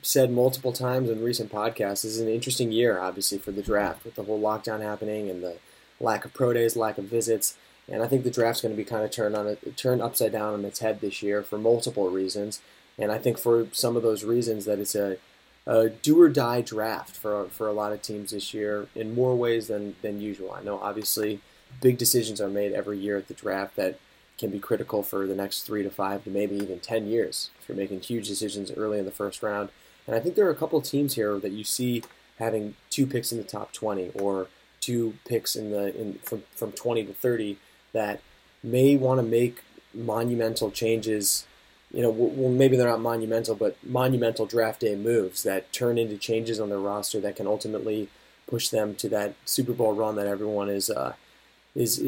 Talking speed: 220 wpm